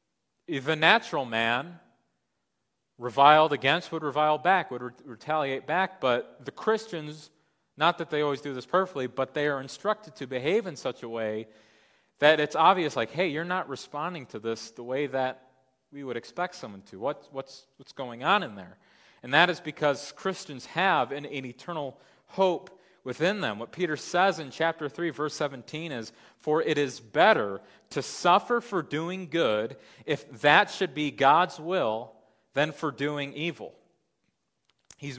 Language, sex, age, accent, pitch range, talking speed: English, male, 30-49, American, 130-170 Hz, 170 wpm